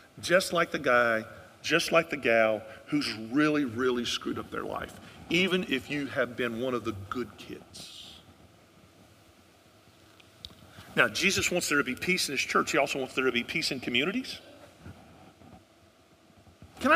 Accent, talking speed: American, 160 wpm